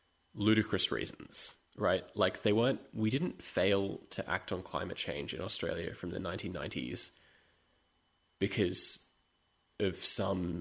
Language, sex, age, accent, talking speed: English, male, 20-39, Australian, 125 wpm